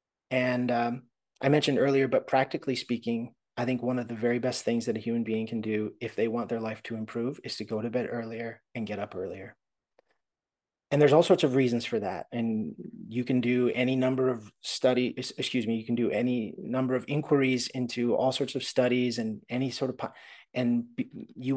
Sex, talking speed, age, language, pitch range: male, 210 wpm, 30-49, English, 115-130 Hz